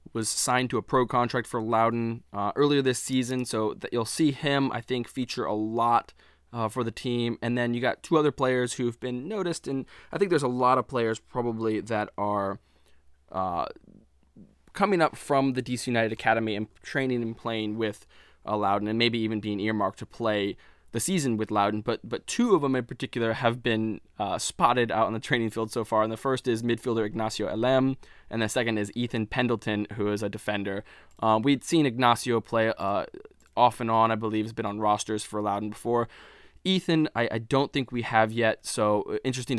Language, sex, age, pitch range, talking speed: English, male, 20-39, 110-125 Hz, 205 wpm